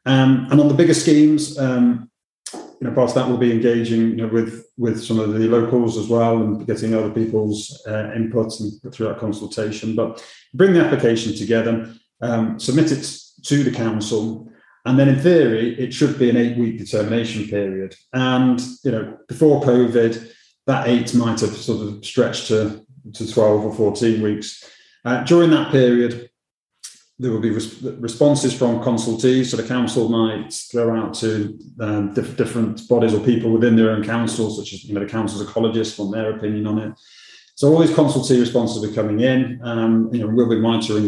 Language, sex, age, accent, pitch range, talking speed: English, male, 30-49, British, 110-125 Hz, 190 wpm